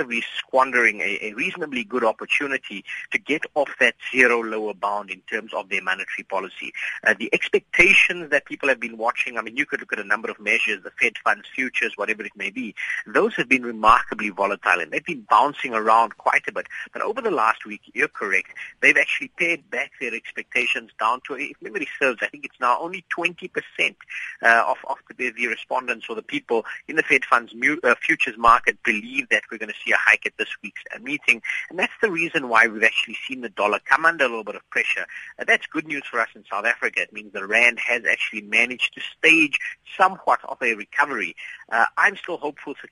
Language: English